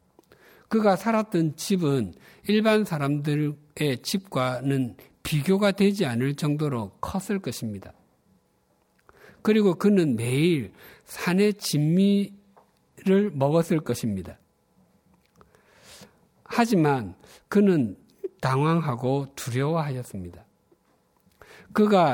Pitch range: 120-175 Hz